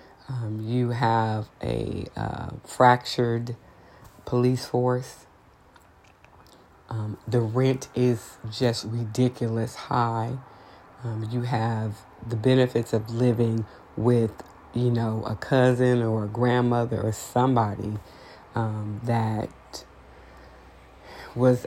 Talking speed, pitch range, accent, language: 95 wpm, 110-125 Hz, American, English